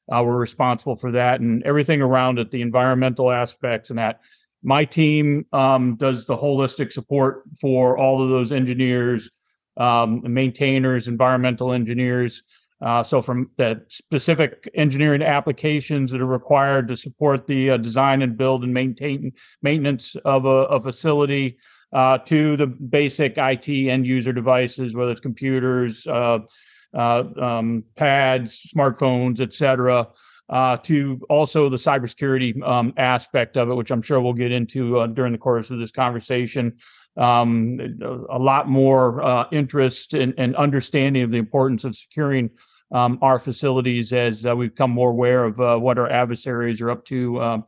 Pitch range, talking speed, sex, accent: 120-135 Hz, 155 wpm, male, American